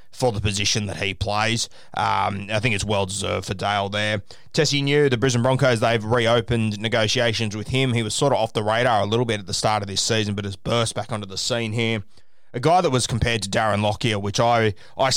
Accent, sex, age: Australian, male, 20-39